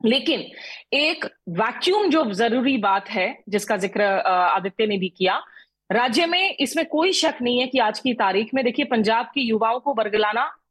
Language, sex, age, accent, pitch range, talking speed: Hindi, female, 30-49, native, 210-280 Hz, 175 wpm